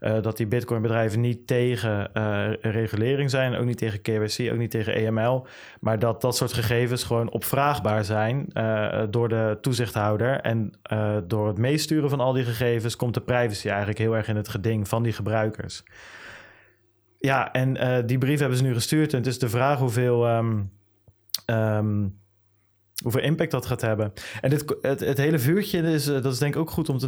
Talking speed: 185 wpm